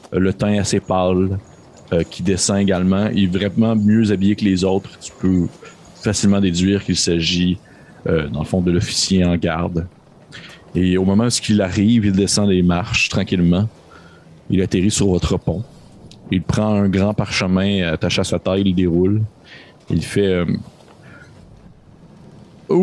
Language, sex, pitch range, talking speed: French, male, 95-130 Hz, 160 wpm